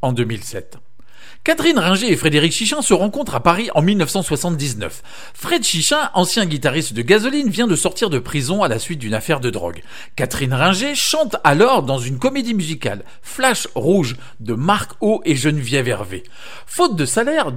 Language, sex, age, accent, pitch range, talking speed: English, male, 50-69, French, 130-220 Hz, 170 wpm